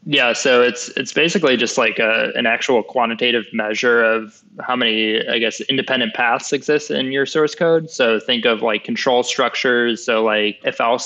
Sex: male